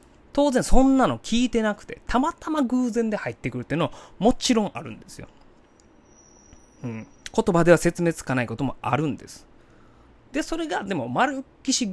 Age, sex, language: 20-39, male, Japanese